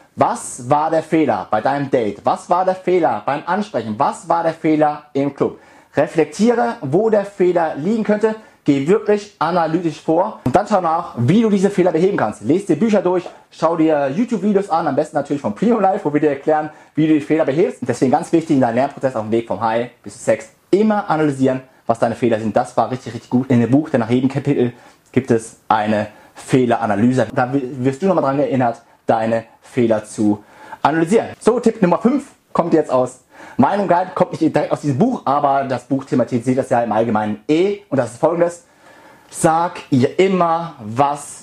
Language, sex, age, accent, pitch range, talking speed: German, male, 30-49, German, 130-180 Hz, 205 wpm